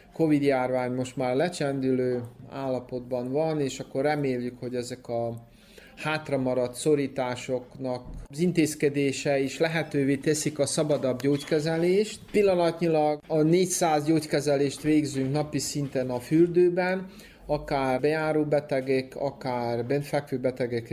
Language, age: Hungarian, 30-49